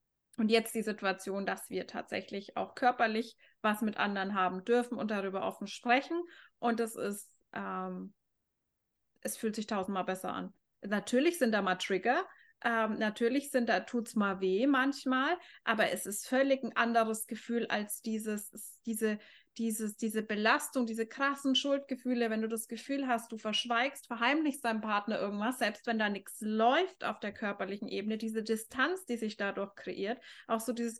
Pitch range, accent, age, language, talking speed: 220-260 Hz, German, 20-39, German, 165 wpm